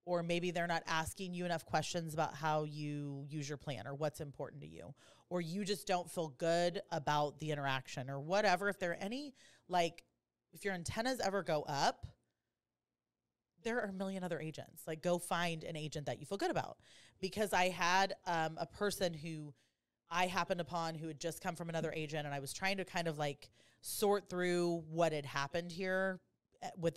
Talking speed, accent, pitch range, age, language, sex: 200 wpm, American, 155-195 Hz, 30-49, English, female